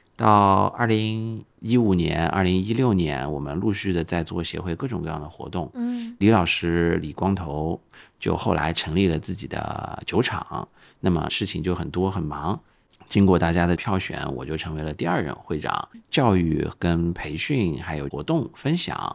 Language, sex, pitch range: Chinese, male, 80-110 Hz